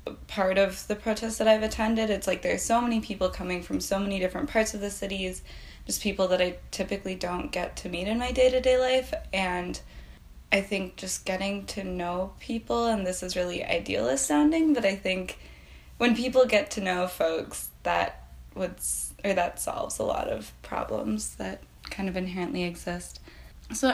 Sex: female